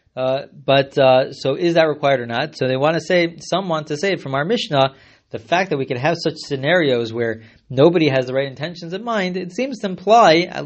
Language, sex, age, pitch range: English, male, 20-39, 125-165 Hz